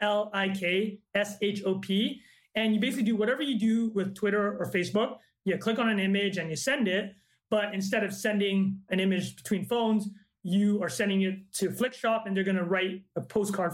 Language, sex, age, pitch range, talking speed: English, male, 30-49, 195-230 Hz, 210 wpm